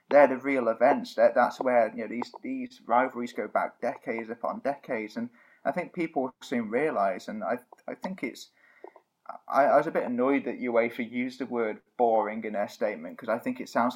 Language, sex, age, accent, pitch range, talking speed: English, male, 20-39, British, 120-190 Hz, 205 wpm